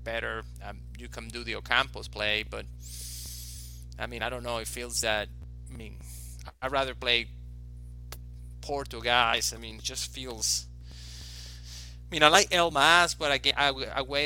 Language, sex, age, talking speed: English, male, 20-39, 165 wpm